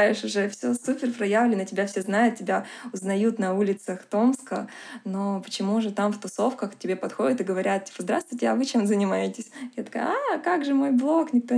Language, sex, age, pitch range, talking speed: Russian, female, 20-39, 190-235 Hz, 185 wpm